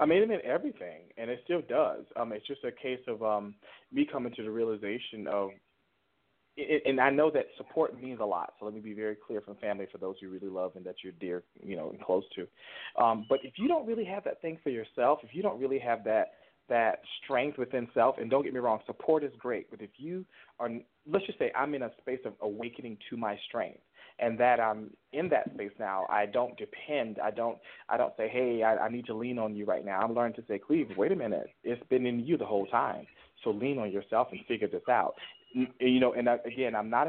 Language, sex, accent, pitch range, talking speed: English, male, American, 105-125 Hz, 250 wpm